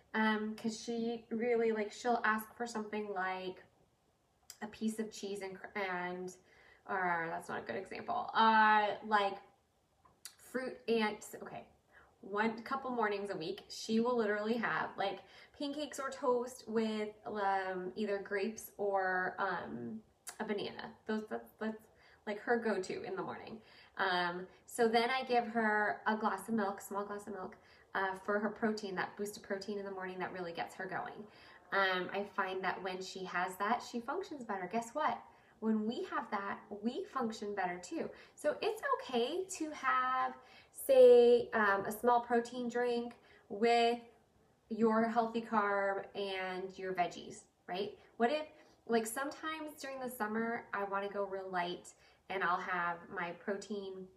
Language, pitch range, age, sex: English, 195-235 Hz, 20-39, female